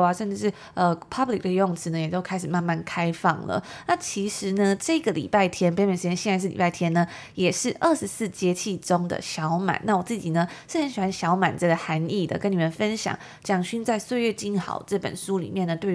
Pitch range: 170-215 Hz